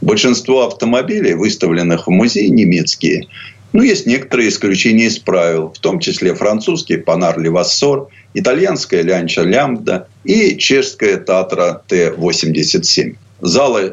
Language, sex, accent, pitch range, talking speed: Russian, male, native, 90-140 Hz, 110 wpm